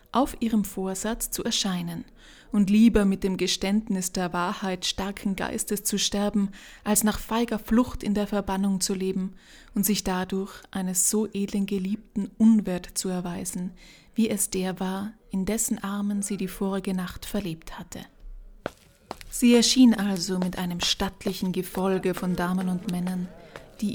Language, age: German, 20-39